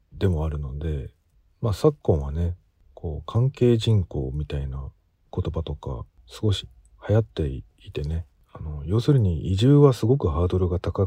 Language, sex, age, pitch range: Japanese, male, 40-59, 80-115 Hz